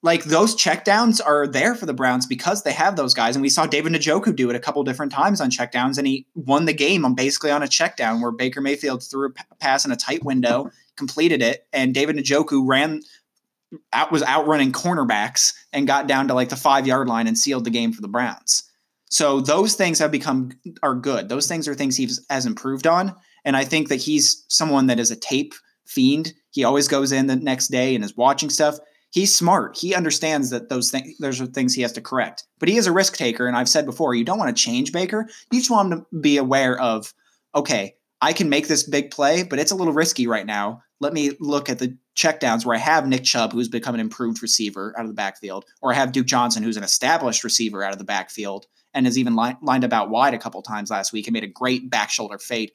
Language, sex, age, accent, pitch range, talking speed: English, male, 20-39, American, 125-155 Hz, 245 wpm